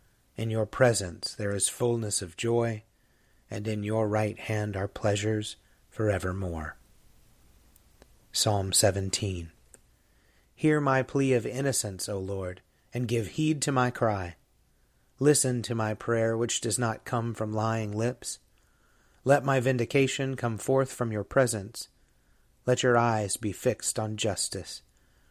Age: 30-49